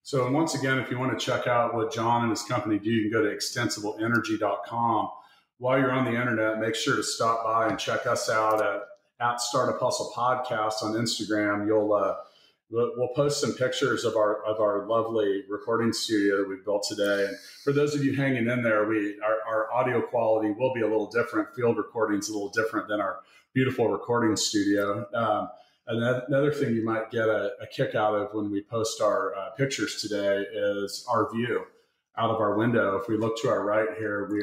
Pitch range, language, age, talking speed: 105-125 Hz, English, 40-59, 210 wpm